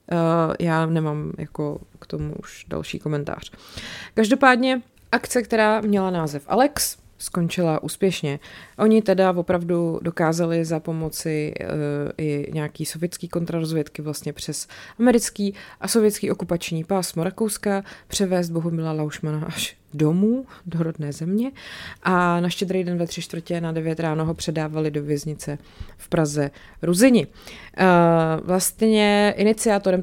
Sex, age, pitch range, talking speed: female, 20-39, 155-190 Hz, 125 wpm